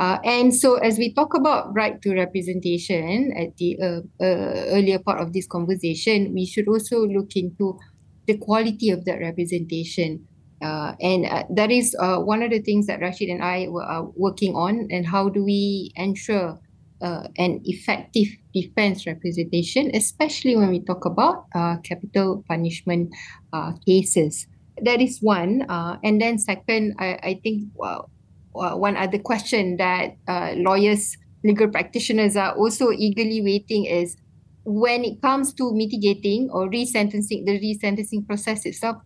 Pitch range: 180-220 Hz